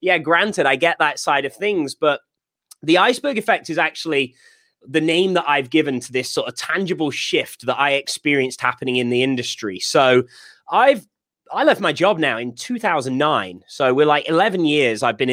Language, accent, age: English, British, 20-39